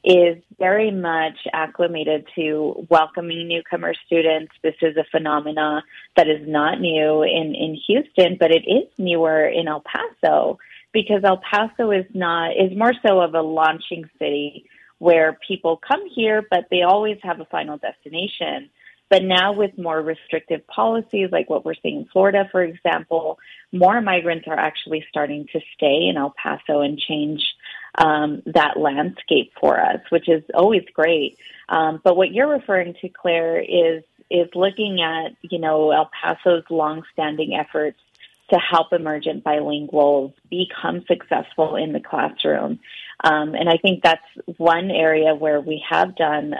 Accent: American